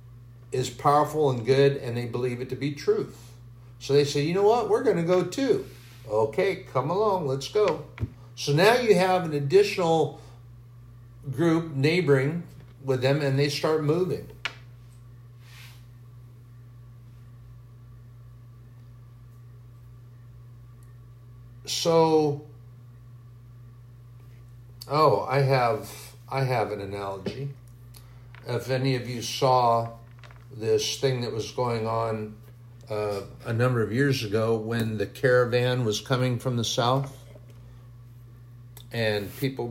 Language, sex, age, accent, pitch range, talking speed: English, male, 60-79, American, 120-135 Hz, 115 wpm